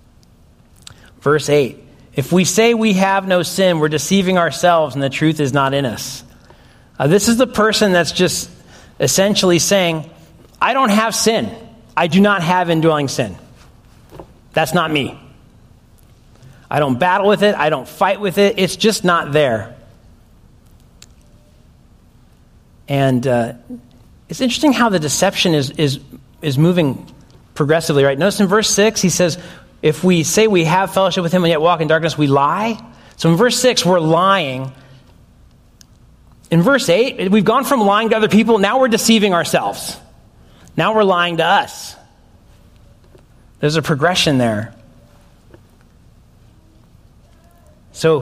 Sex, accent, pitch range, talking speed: male, American, 130-190 Hz, 145 wpm